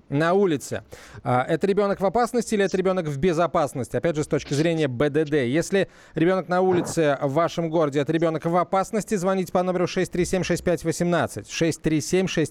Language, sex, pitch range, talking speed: Russian, male, 150-185 Hz, 155 wpm